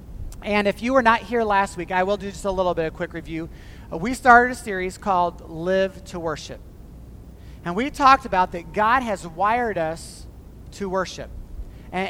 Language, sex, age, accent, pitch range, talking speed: English, male, 30-49, American, 170-215 Hz, 190 wpm